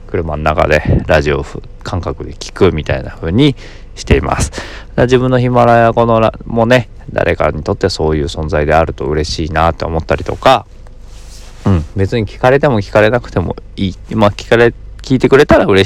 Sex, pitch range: male, 85-105 Hz